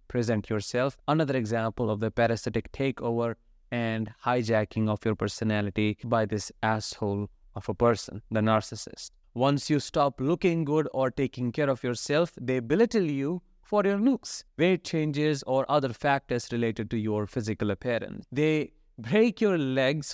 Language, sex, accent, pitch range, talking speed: English, male, Indian, 115-155 Hz, 150 wpm